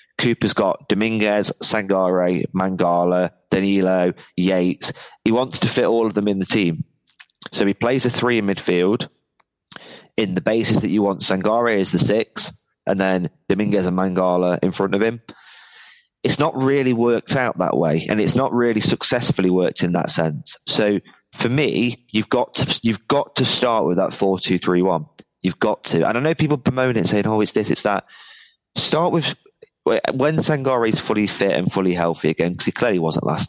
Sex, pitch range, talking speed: male, 95-125 Hz, 185 wpm